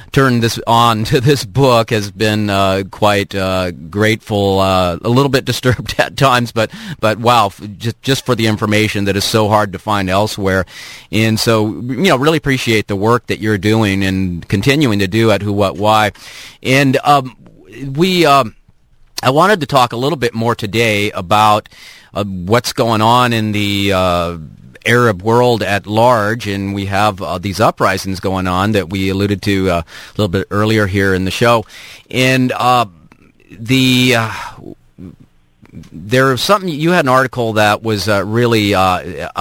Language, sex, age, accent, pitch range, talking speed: English, male, 40-59, American, 95-120 Hz, 180 wpm